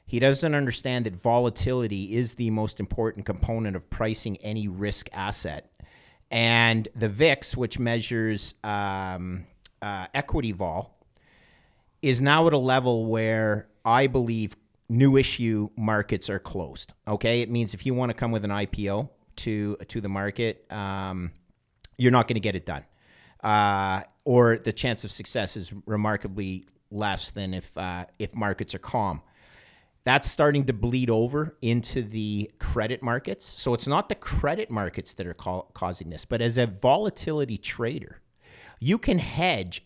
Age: 40-59